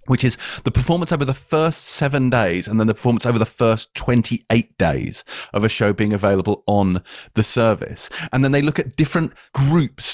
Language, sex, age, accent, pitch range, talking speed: English, male, 30-49, British, 115-145 Hz, 195 wpm